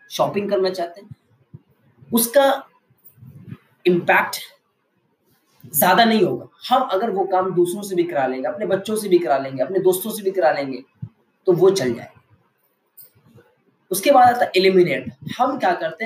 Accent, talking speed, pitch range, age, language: native, 155 wpm, 170-235 Hz, 20-39, Hindi